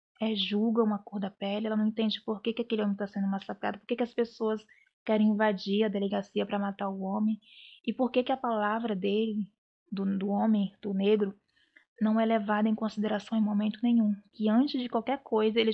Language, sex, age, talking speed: Portuguese, female, 20-39, 215 wpm